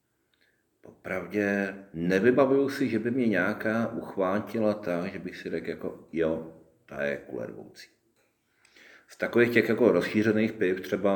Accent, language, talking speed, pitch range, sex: native, Czech, 135 wpm, 75-100 Hz, male